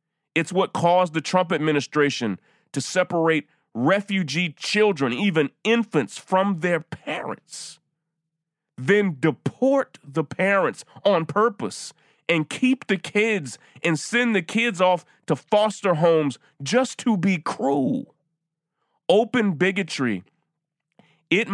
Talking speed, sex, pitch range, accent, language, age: 110 wpm, male, 140-180 Hz, American, English, 30-49